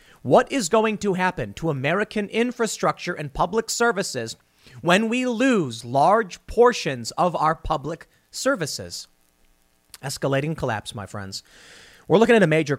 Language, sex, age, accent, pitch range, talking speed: English, male, 30-49, American, 120-185 Hz, 135 wpm